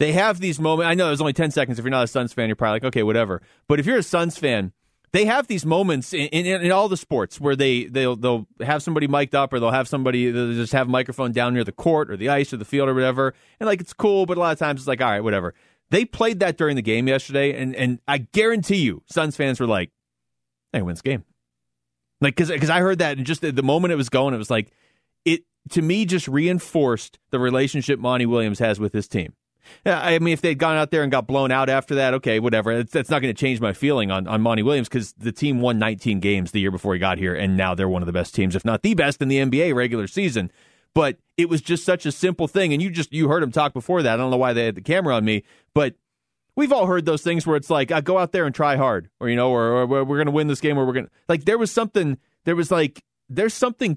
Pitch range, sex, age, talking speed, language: 115-165 Hz, male, 30-49, 280 wpm, English